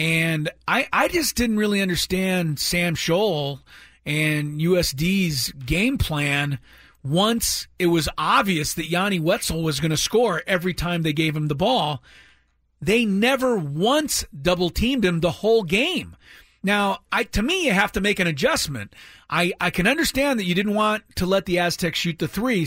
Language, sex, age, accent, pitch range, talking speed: English, male, 40-59, American, 155-200 Hz, 170 wpm